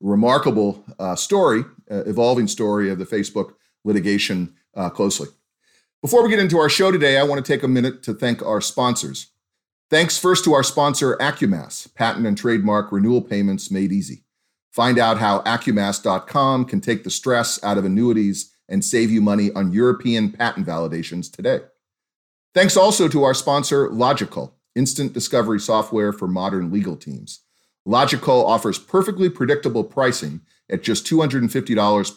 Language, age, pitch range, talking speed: English, 40-59, 100-135 Hz, 155 wpm